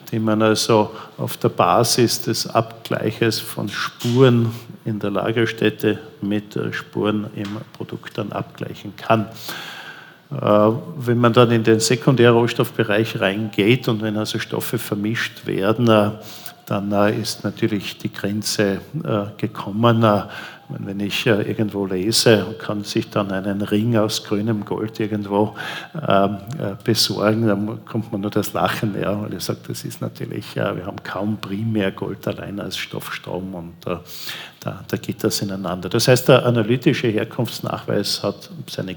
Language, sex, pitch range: German, male, 105-115 Hz